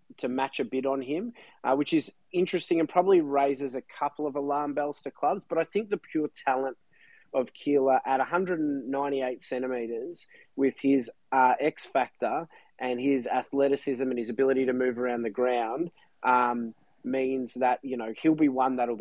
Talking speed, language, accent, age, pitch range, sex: 175 wpm, English, Australian, 20-39, 125-150 Hz, male